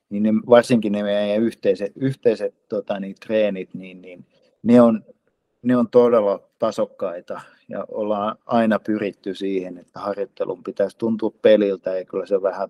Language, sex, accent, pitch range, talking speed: Finnish, male, native, 100-130 Hz, 150 wpm